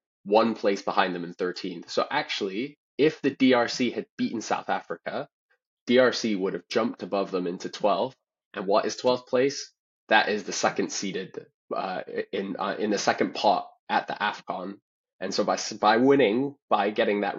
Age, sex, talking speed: 20-39, male, 175 wpm